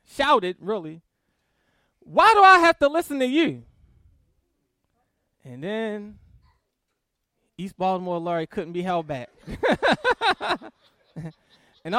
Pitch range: 175-285 Hz